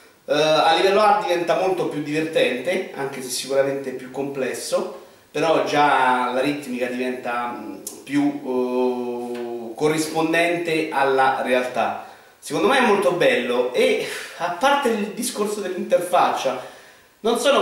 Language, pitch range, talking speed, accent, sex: Italian, 130-190 Hz, 120 wpm, native, male